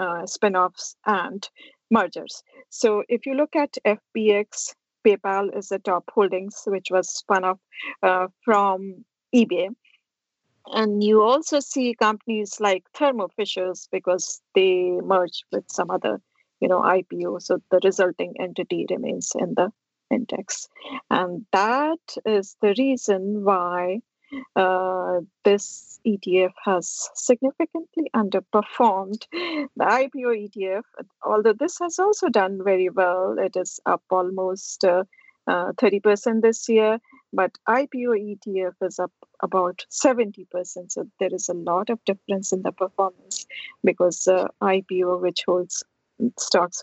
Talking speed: 130 wpm